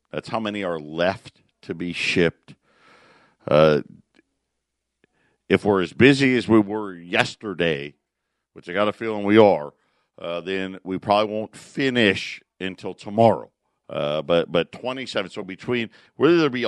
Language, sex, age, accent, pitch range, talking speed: English, male, 50-69, American, 90-115 Hz, 150 wpm